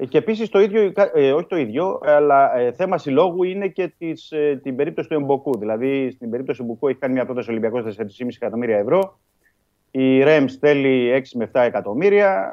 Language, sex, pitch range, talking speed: Greek, male, 105-150 Hz, 200 wpm